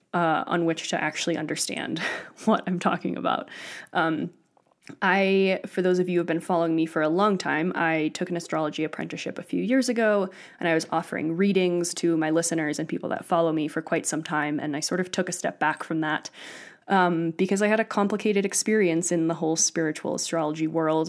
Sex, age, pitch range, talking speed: female, 20-39, 160-195 Hz, 210 wpm